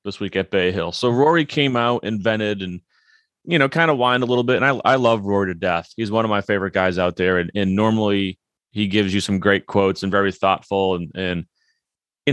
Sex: male